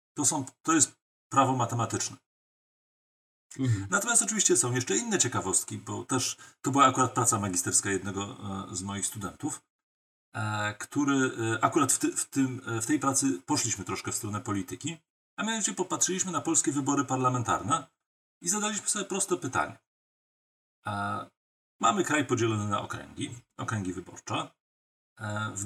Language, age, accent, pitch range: Polish, 40-59, native, 110-175 Hz